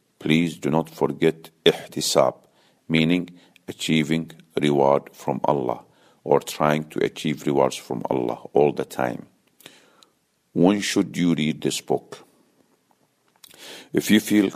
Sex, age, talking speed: male, 50-69, 120 wpm